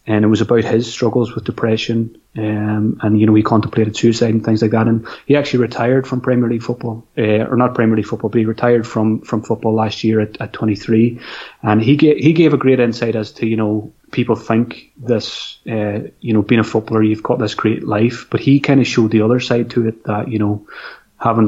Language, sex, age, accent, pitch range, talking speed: English, male, 30-49, British, 110-120 Hz, 235 wpm